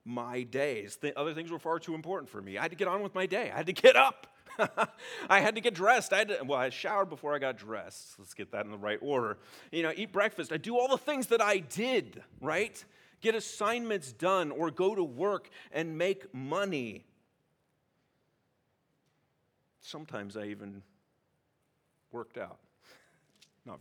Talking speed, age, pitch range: 190 wpm, 40-59, 130-190 Hz